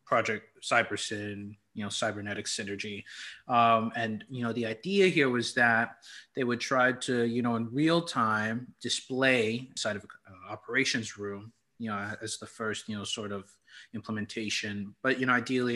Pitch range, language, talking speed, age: 110-125 Hz, English, 170 wpm, 30-49